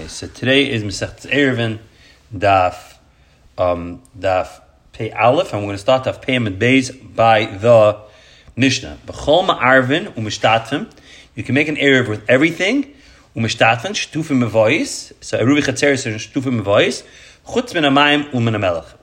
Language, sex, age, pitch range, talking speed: English, male, 30-49, 115-155 Hz, 110 wpm